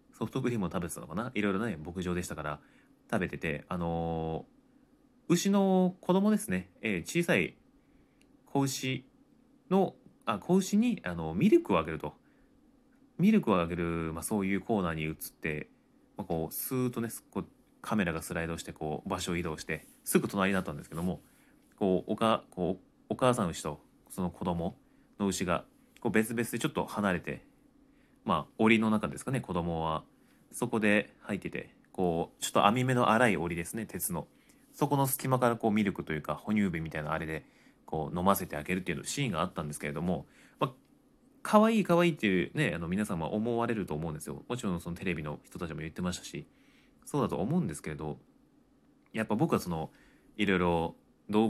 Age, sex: 30-49, male